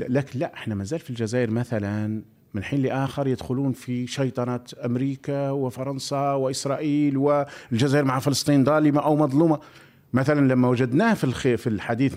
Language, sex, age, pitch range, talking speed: Arabic, male, 50-69, 130-170 Hz, 135 wpm